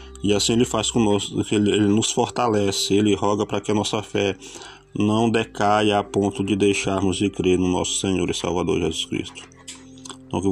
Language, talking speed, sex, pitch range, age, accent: Portuguese, 185 wpm, male, 95-110 Hz, 20-39, Brazilian